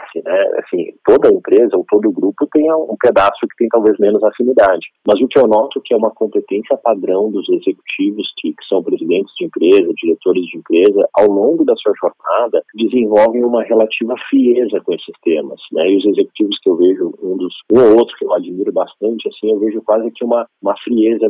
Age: 40-59